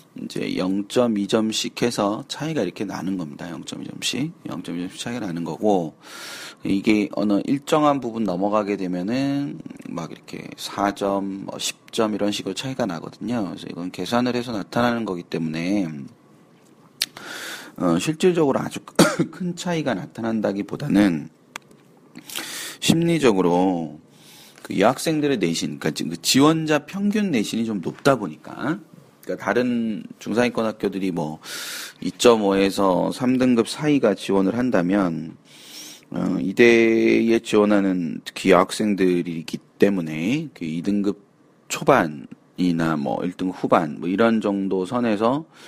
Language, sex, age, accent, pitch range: Korean, male, 30-49, native, 95-125 Hz